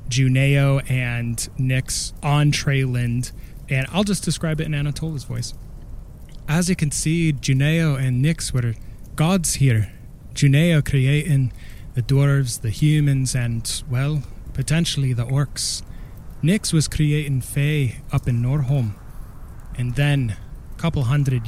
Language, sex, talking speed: English, male, 130 wpm